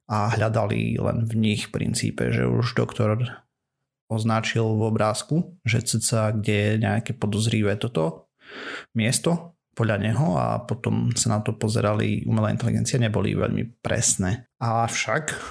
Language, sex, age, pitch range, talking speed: Slovak, male, 30-49, 110-120 Hz, 130 wpm